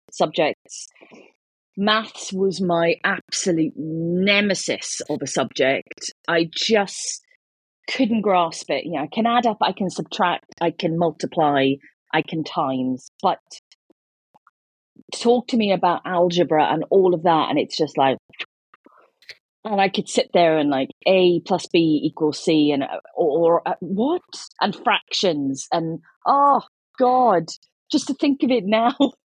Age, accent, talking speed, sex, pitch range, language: 30-49, British, 145 wpm, female, 165-220 Hz, Italian